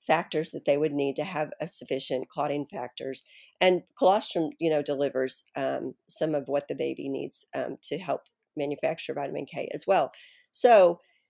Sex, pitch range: female, 150-180 Hz